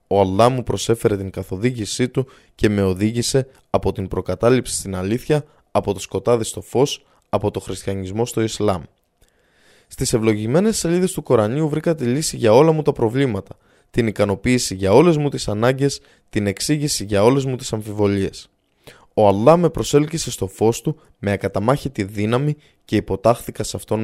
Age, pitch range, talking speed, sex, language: 20-39, 100-130 Hz, 165 wpm, male, Greek